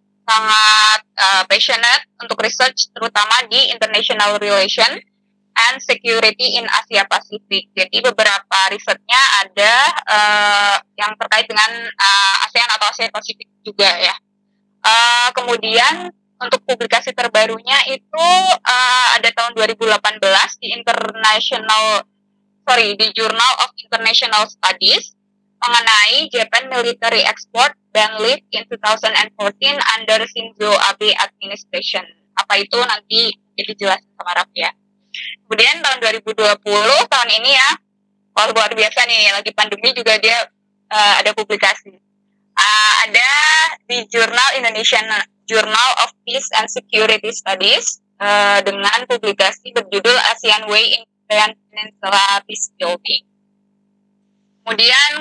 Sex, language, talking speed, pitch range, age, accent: female, Indonesian, 110 wpm, 205-235 Hz, 10-29, native